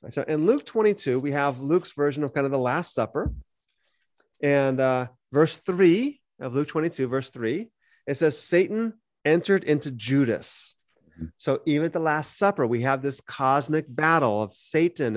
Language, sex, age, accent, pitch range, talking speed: English, male, 30-49, American, 130-160 Hz, 165 wpm